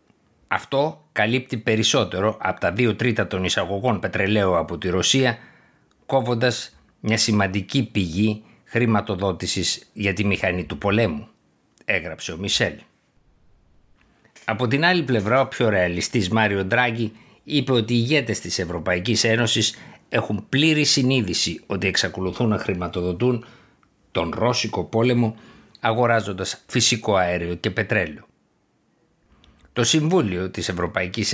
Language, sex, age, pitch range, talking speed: Greek, male, 50-69, 95-120 Hz, 115 wpm